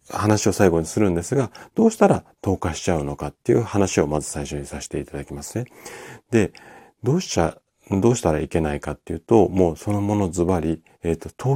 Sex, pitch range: male, 75-115 Hz